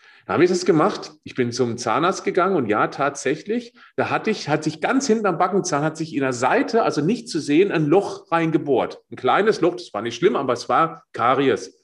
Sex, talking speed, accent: male, 230 wpm, German